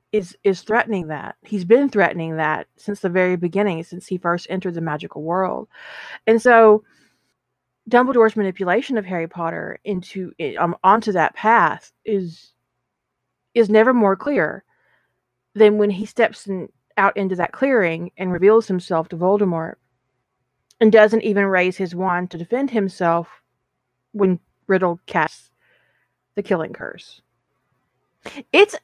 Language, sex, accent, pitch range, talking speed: English, female, American, 175-210 Hz, 140 wpm